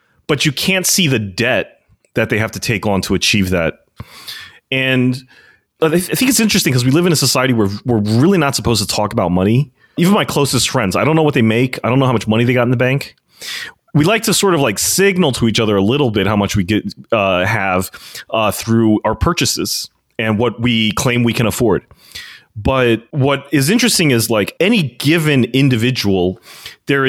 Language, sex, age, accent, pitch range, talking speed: English, male, 30-49, American, 105-140 Hz, 215 wpm